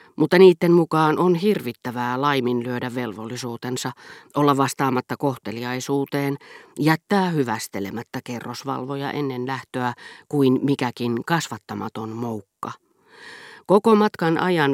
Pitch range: 120-150 Hz